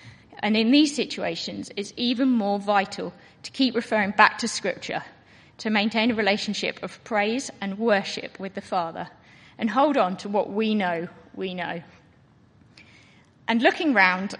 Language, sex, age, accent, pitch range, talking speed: English, female, 30-49, British, 205-275 Hz, 155 wpm